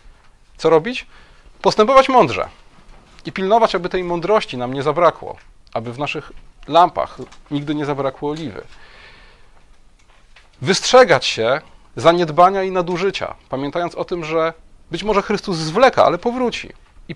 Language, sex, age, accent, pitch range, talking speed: Polish, male, 30-49, native, 130-180 Hz, 125 wpm